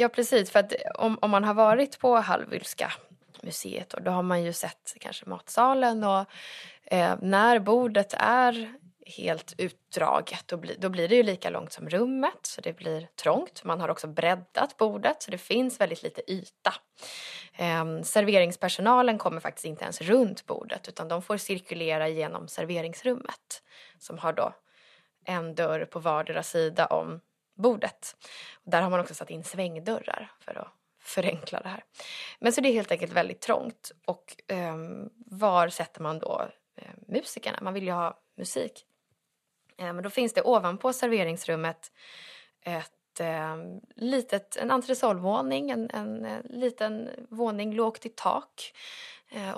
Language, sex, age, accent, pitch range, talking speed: Swedish, female, 20-39, native, 170-235 Hz, 165 wpm